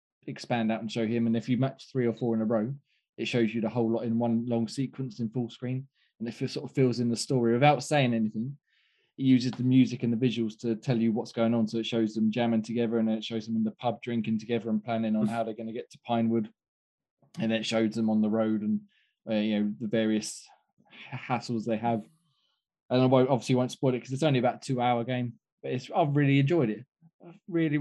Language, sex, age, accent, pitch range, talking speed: English, male, 20-39, British, 110-135 Hz, 250 wpm